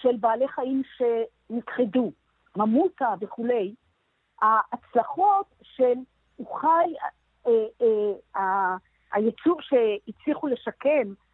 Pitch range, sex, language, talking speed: 230-295 Hz, female, Hebrew, 80 wpm